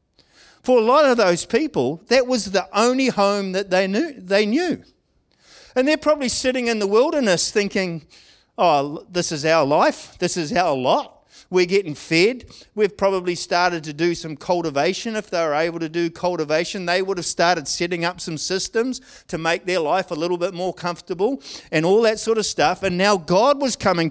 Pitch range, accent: 160-215 Hz, Australian